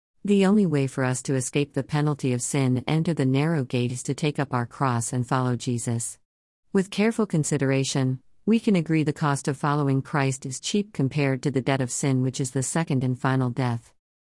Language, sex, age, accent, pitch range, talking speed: English, female, 50-69, American, 130-160 Hz, 215 wpm